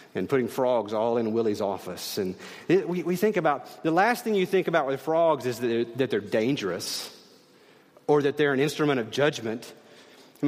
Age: 40-59